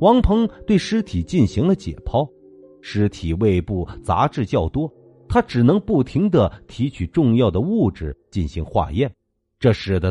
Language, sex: Chinese, male